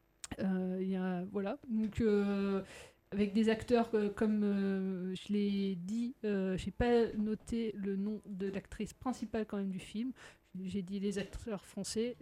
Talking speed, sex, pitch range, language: 165 wpm, female, 190-225 Hz, French